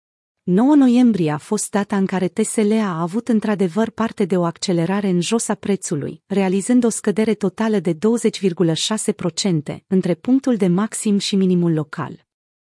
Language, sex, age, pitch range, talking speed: Romanian, female, 30-49, 180-225 Hz, 150 wpm